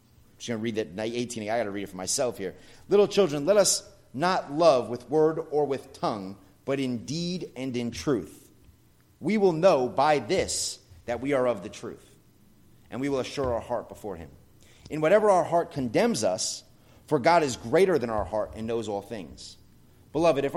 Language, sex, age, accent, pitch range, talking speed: English, male, 30-49, American, 105-140 Hz, 195 wpm